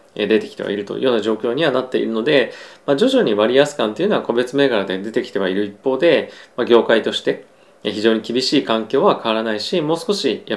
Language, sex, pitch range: Japanese, male, 105-140 Hz